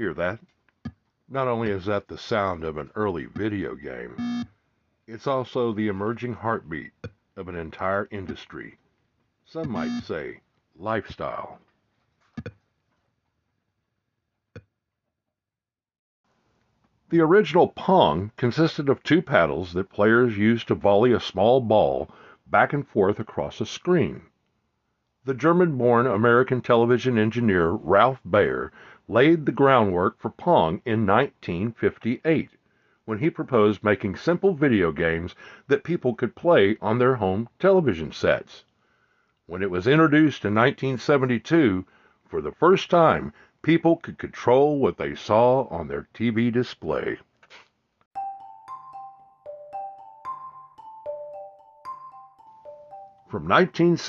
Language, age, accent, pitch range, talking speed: English, 60-79, American, 110-170 Hz, 110 wpm